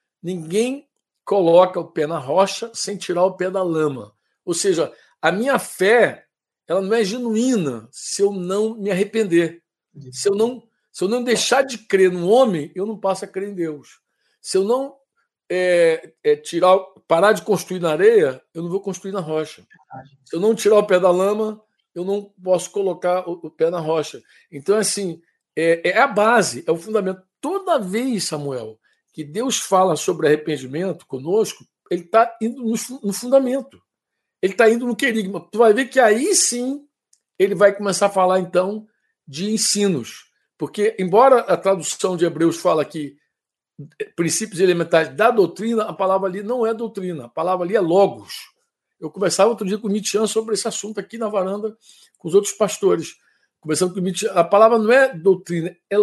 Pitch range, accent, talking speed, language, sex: 175-225 Hz, Brazilian, 185 wpm, Portuguese, male